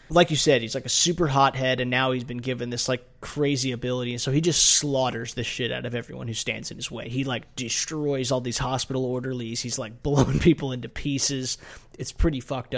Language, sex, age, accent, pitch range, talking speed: English, male, 20-39, American, 125-140 Hz, 225 wpm